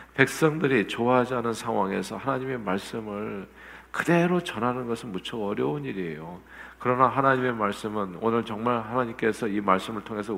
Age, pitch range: 50-69, 90-120 Hz